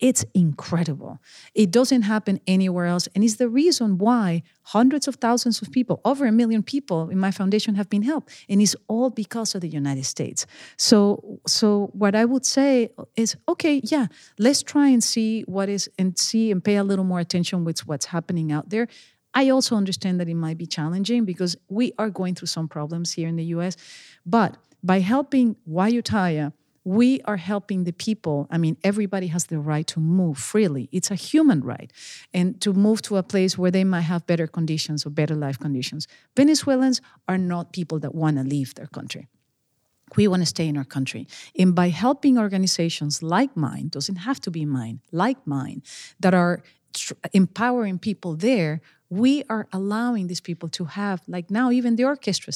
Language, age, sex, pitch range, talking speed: English, 40-59, female, 165-225 Hz, 190 wpm